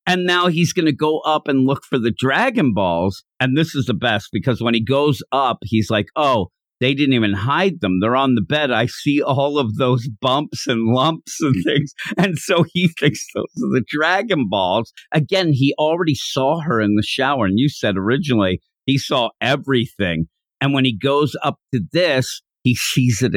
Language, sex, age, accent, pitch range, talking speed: English, male, 50-69, American, 115-160 Hz, 205 wpm